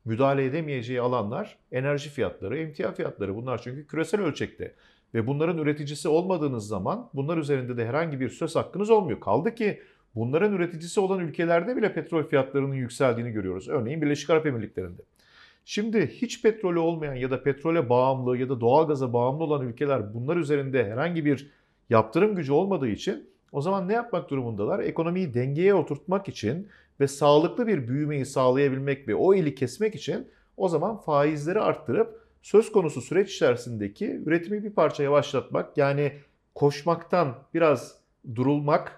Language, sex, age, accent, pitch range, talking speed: Turkish, male, 50-69, native, 130-180 Hz, 150 wpm